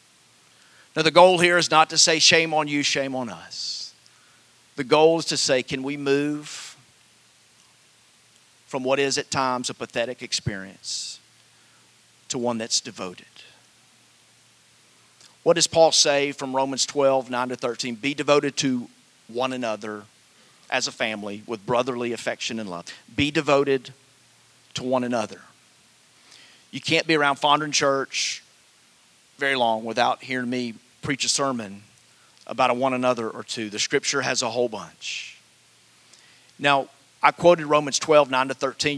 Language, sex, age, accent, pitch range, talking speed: English, male, 40-59, American, 120-145 Hz, 150 wpm